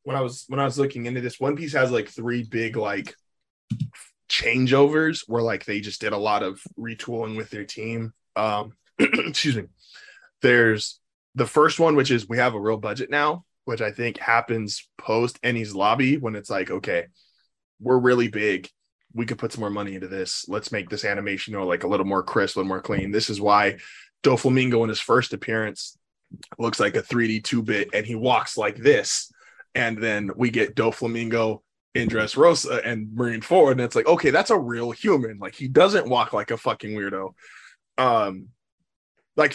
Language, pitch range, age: English, 105-125 Hz, 20-39